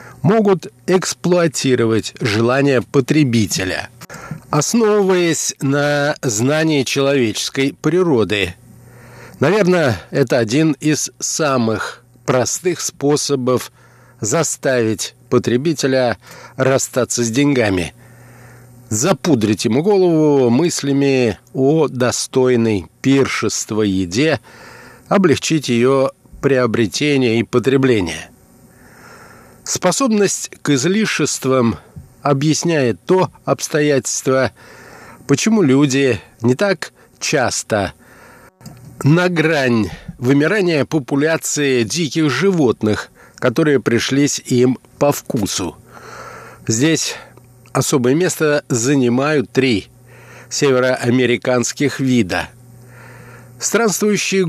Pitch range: 120-150 Hz